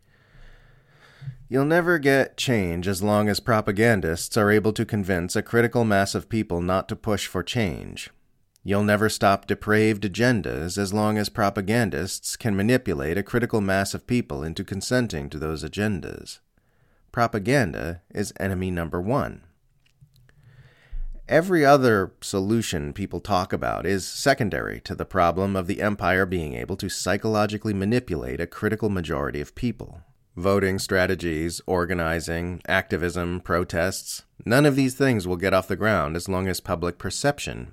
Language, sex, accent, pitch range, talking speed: English, male, American, 90-115 Hz, 145 wpm